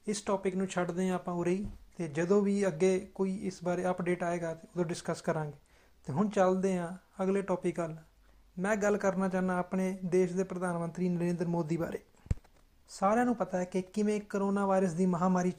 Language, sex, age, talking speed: Punjabi, male, 30-49, 190 wpm